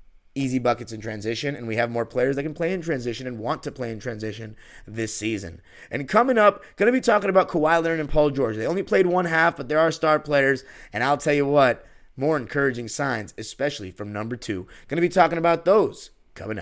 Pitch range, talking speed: 115-160 Hz, 230 wpm